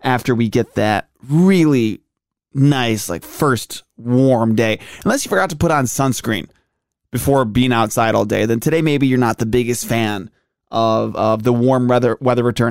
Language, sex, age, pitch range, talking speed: English, male, 20-39, 115-140 Hz, 175 wpm